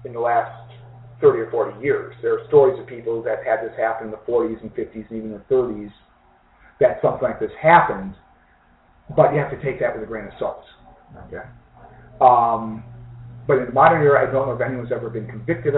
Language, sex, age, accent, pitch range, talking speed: English, male, 40-59, American, 120-150 Hz, 215 wpm